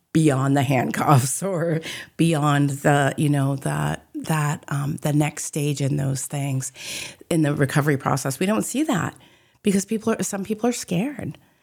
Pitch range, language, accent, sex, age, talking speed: 140-170 Hz, English, American, female, 30-49, 165 wpm